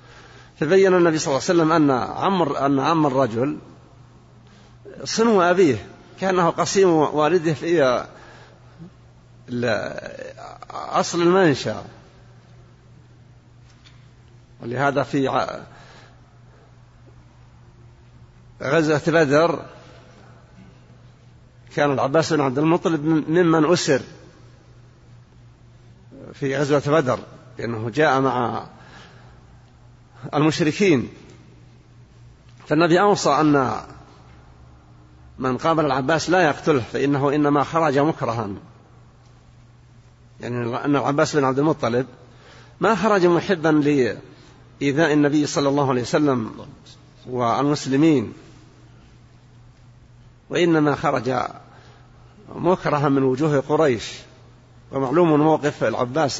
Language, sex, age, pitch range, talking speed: Arabic, male, 50-69, 120-155 Hz, 80 wpm